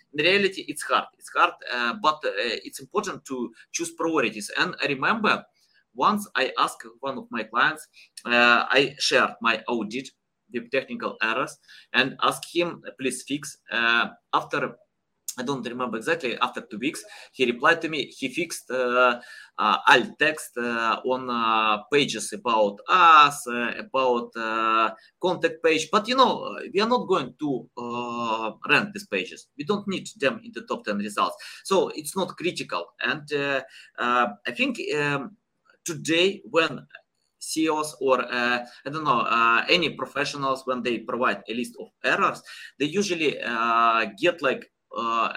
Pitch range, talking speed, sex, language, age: 120-195 Hz, 160 wpm, male, English, 20-39